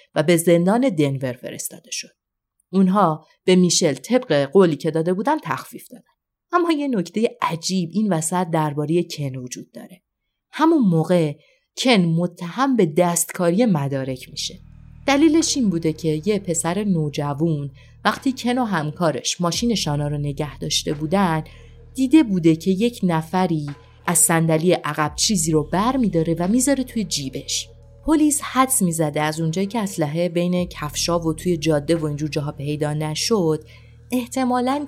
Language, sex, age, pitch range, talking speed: Persian, female, 30-49, 150-200 Hz, 145 wpm